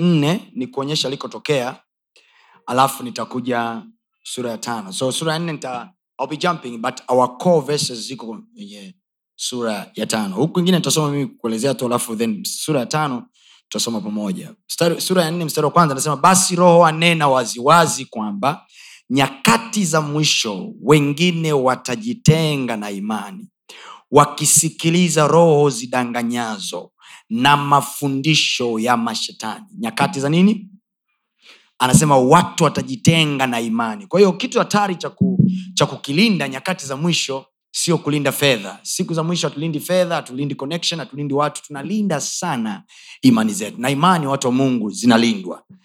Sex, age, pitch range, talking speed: male, 30-49, 135-185 Hz, 140 wpm